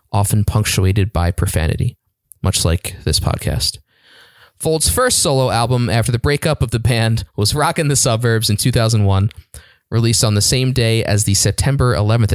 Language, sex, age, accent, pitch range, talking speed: English, male, 20-39, American, 100-130 Hz, 160 wpm